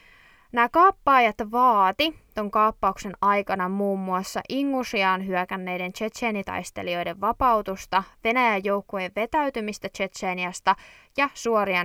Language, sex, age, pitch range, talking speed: Finnish, female, 20-39, 185-230 Hz, 90 wpm